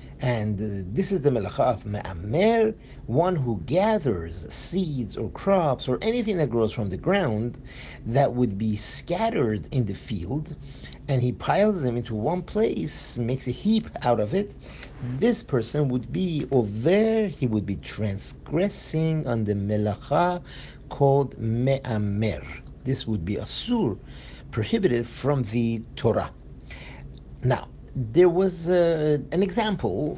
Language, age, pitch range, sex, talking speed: English, 50-69, 120-175 Hz, male, 140 wpm